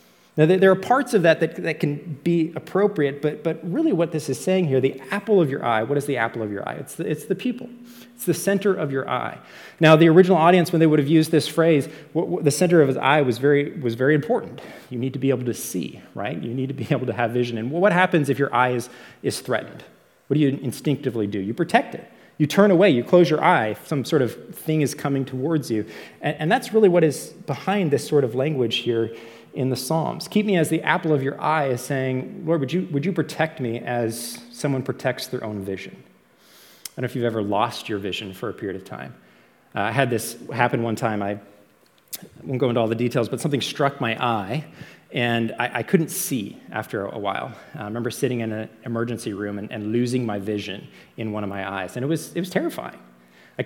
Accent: American